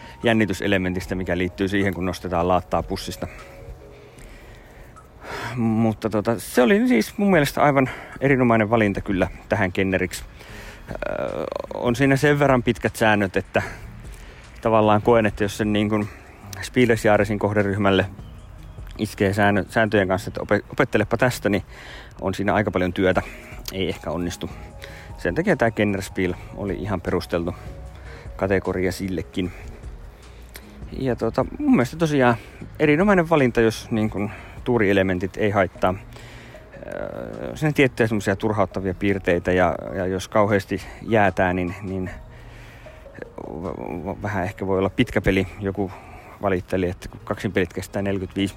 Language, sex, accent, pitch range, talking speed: Finnish, male, native, 90-110 Hz, 125 wpm